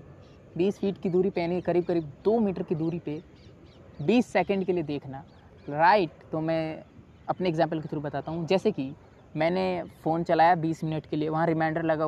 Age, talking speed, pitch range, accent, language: 20-39, 200 wpm, 160-200 Hz, native, Hindi